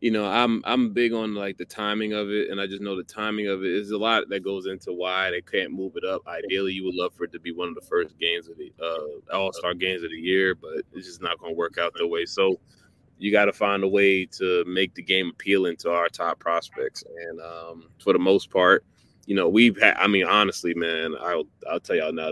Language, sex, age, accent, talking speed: English, male, 20-39, American, 260 wpm